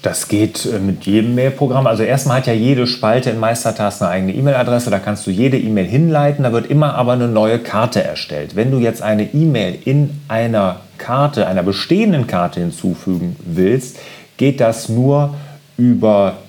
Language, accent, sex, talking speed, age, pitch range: German, German, male, 170 wpm, 40-59, 105-140 Hz